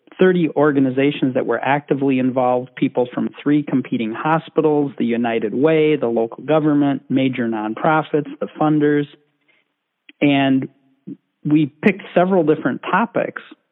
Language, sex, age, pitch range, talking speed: English, male, 40-59, 125-150 Hz, 120 wpm